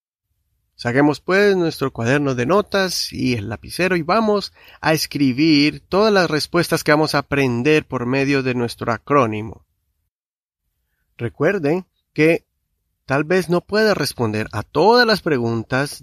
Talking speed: 135 wpm